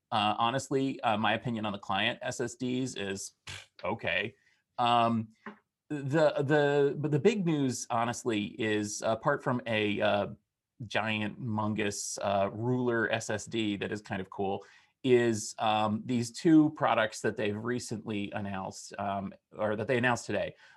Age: 30-49